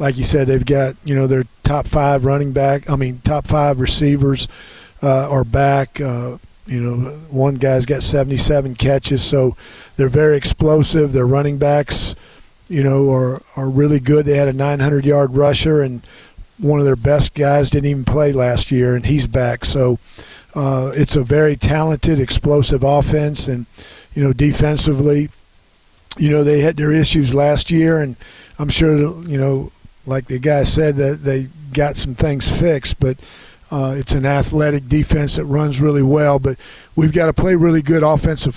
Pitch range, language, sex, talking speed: 135-150 Hz, English, male, 175 wpm